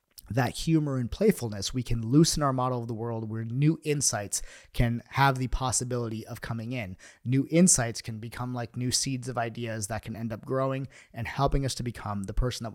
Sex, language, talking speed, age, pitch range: male, English, 205 wpm, 30-49, 110-135 Hz